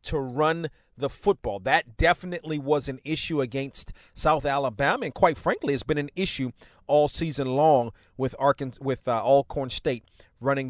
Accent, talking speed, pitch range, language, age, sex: American, 165 wpm, 135-165 Hz, English, 40-59, male